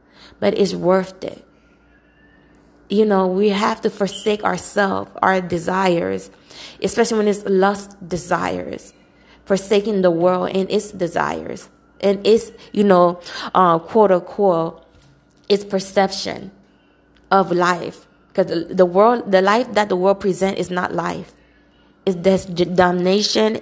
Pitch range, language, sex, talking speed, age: 180-200 Hz, English, female, 125 wpm, 20-39